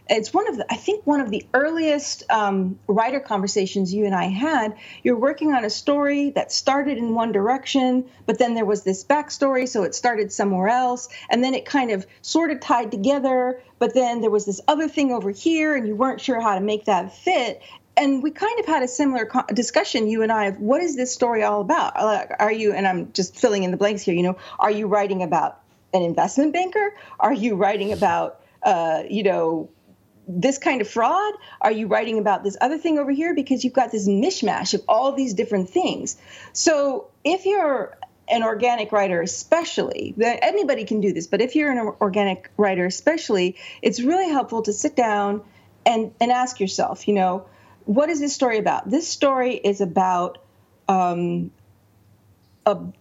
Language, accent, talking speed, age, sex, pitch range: English, American, 195 wpm, 40-59, female, 200-280 Hz